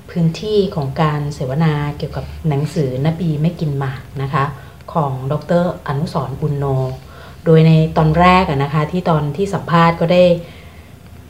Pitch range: 140-170 Hz